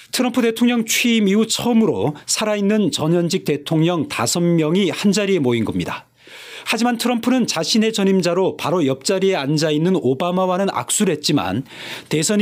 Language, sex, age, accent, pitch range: Korean, male, 40-59, native, 155-205 Hz